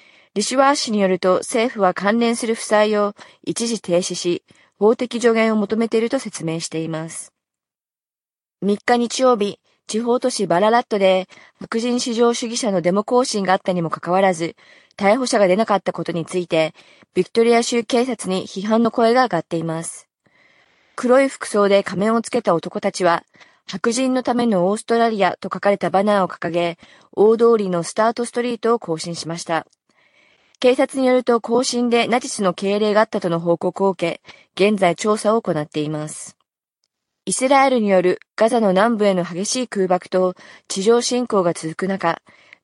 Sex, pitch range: female, 180-235 Hz